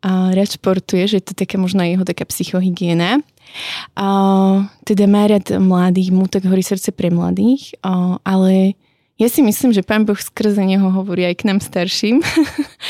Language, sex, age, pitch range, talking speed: Slovak, female, 20-39, 185-210 Hz, 160 wpm